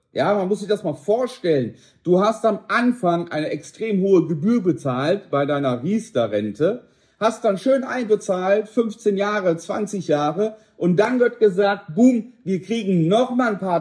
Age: 40-59